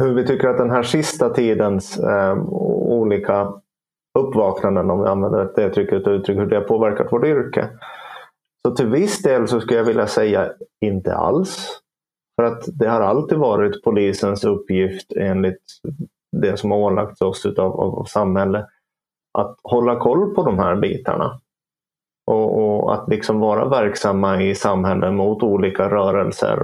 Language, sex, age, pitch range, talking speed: Finnish, male, 30-49, 100-115 Hz, 150 wpm